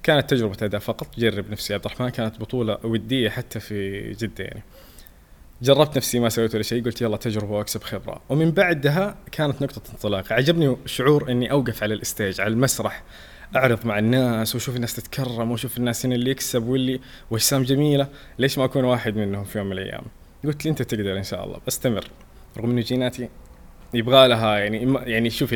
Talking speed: 180 wpm